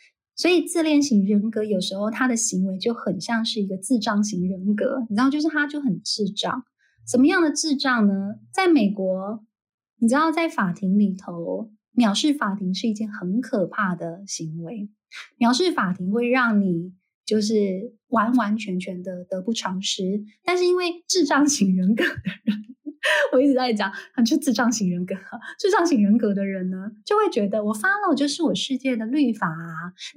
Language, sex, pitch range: Chinese, female, 195-270 Hz